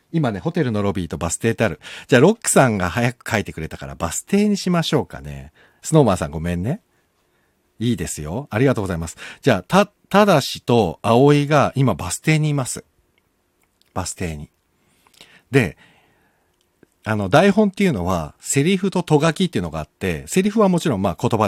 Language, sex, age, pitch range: Japanese, male, 50-69, 90-150 Hz